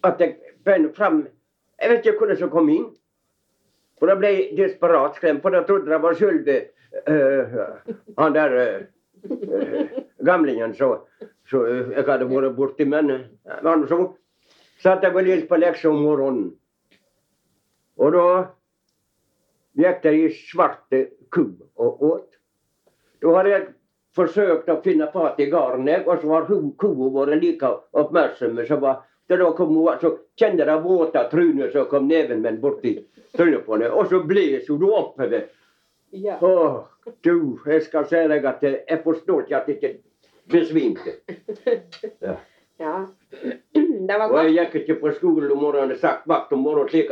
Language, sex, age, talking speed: English, male, 60-79, 160 wpm